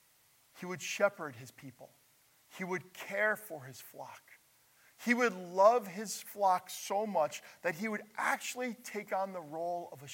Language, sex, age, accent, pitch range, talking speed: English, male, 40-59, American, 140-195 Hz, 165 wpm